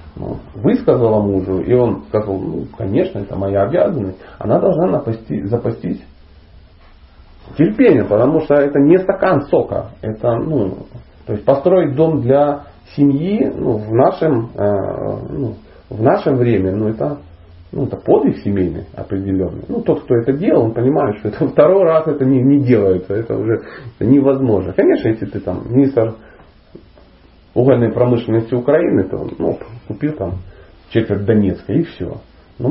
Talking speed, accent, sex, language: 150 wpm, native, male, Russian